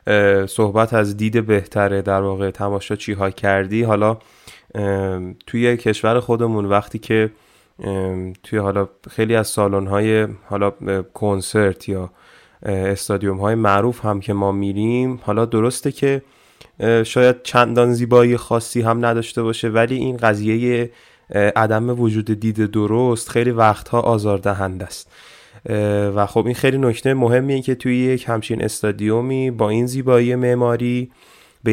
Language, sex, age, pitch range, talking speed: Persian, male, 20-39, 100-125 Hz, 130 wpm